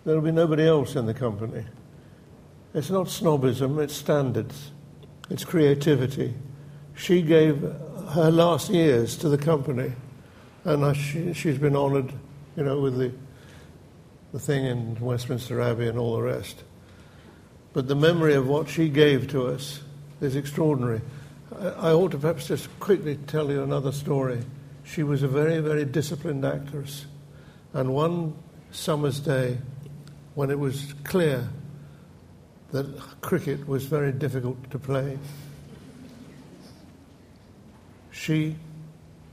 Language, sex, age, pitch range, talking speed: English, male, 60-79, 135-155 Hz, 125 wpm